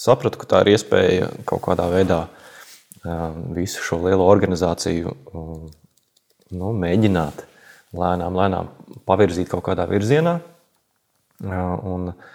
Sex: male